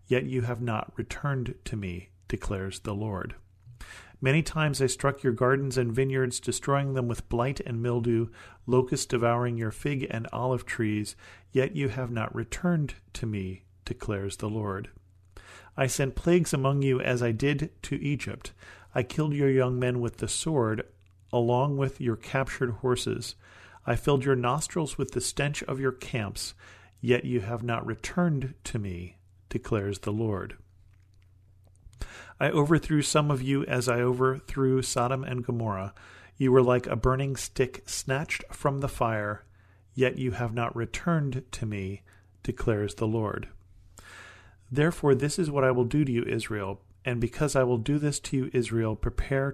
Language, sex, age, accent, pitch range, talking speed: English, male, 40-59, American, 100-135 Hz, 165 wpm